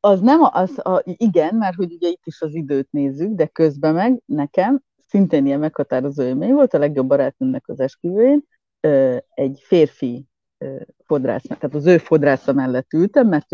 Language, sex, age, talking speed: Hungarian, female, 30-49, 165 wpm